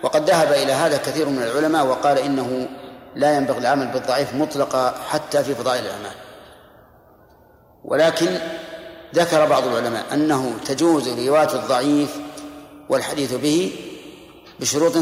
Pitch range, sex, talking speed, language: 135-165 Hz, male, 115 wpm, Arabic